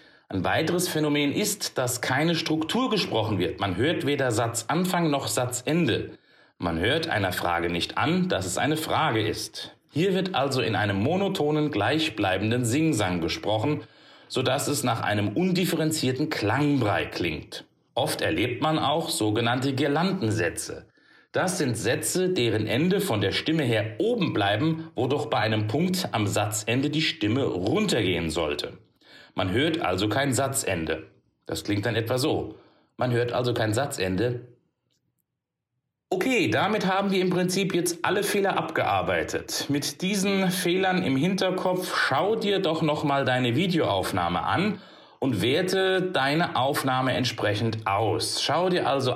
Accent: German